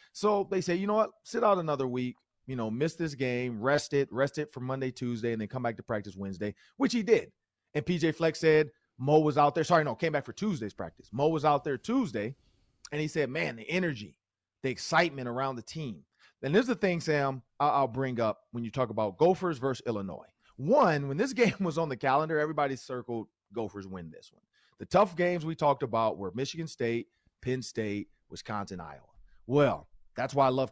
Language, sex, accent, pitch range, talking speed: English, male, American, 125-170 Hz, 220 wpm